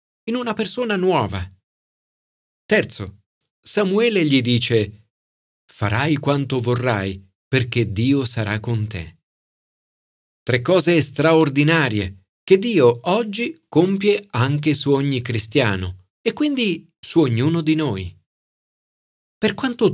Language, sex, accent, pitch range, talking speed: Italian, male, native, 105-160 Hz, 105 wpm